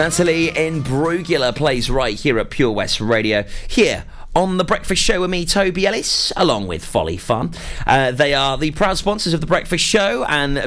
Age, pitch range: 30-49, 100-155 Hz